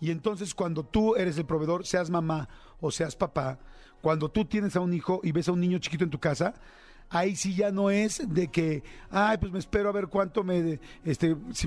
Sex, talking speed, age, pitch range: male, 225 wpm, 40-59, 170-205 Hz